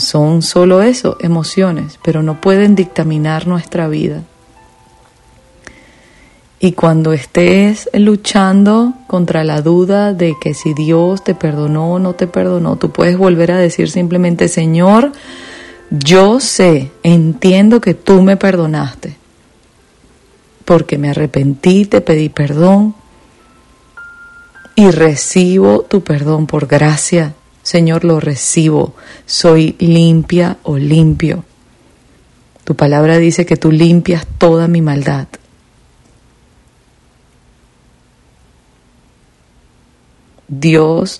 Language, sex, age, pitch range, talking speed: English, female, 40-59, 150-180 Hz, 100 wpm